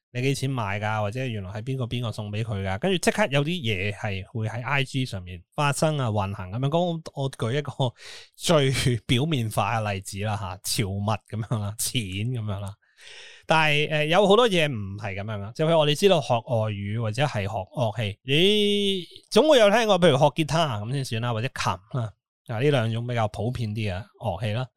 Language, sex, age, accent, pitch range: Chinese, male, 20-39, native, 110-145 Hz